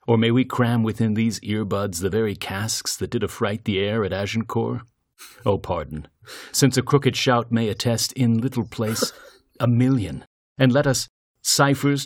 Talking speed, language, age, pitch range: 170 wpm, English, 40-59, 100-120 Hz